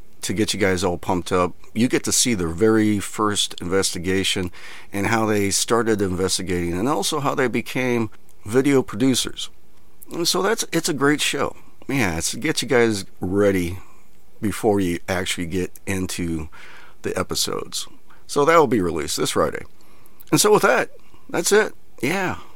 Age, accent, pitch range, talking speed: 50-69, American, 95-125 Hz, 165 wpm